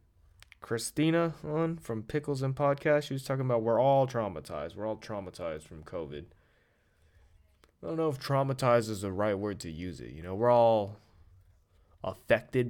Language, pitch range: English, 90-125 Hz